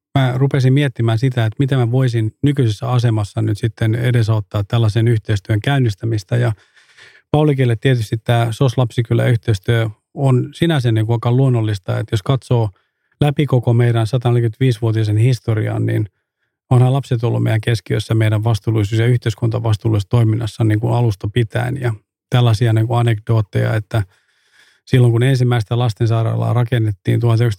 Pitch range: 115-130 Hz